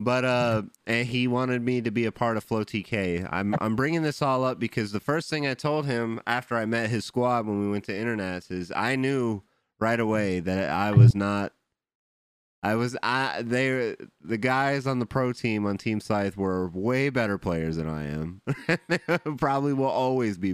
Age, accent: 30-49, American